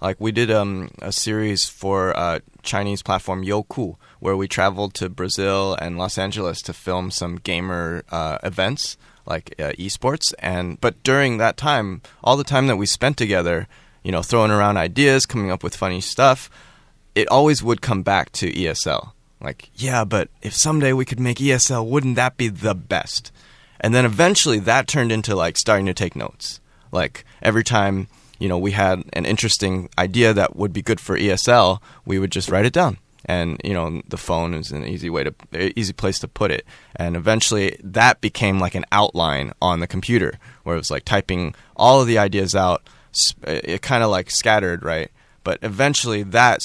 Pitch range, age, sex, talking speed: 90-115 Hz, 20-39, male, 190 wpm